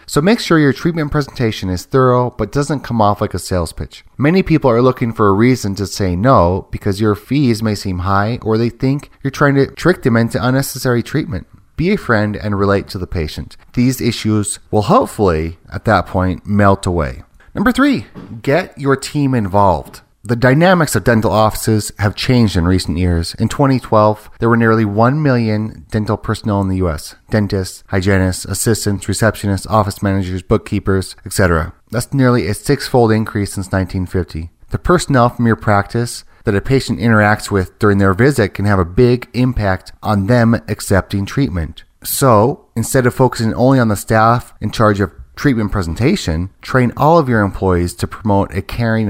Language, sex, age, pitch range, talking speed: English, male, 30-49, 95-125 Hz, 180 wpm